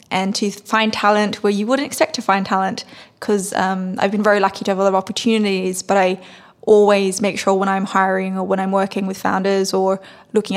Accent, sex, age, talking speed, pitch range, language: Australian, female, 10-29, 215 wpm, 190-210 Hz, English